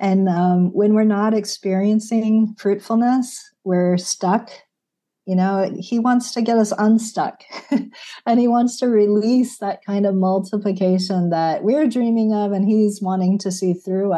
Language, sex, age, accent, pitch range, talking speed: English, female, 40-59, American, 175-210 Hz, 150 wpm